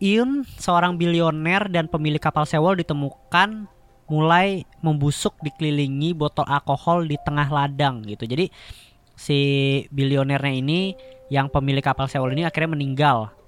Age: 20-39